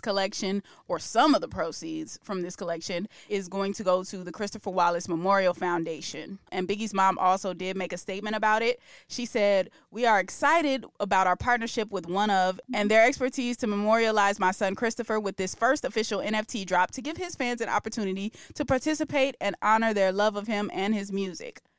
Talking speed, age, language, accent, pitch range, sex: 195 wpm, 20-39, English, American, 185-230 Hz, female